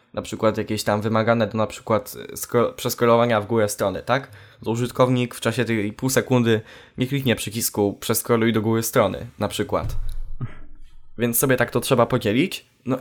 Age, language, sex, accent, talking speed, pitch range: 10-29, Polish, male, native, 165 wpm, 110-130 Hz